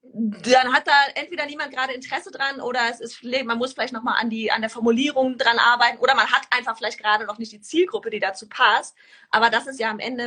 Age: 30-49